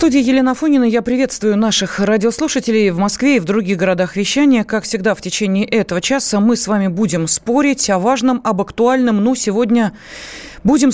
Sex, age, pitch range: female, 30-49, 180-240 Hz